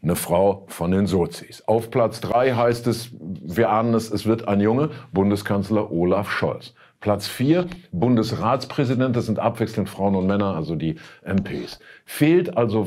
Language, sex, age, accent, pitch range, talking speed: German, male, 50-69, German, 105-140 Hz, 160 wpm